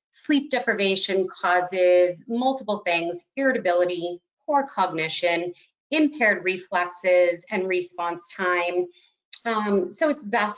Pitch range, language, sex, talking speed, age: 180-230 Hz, English, female, 95 wpm, 30-49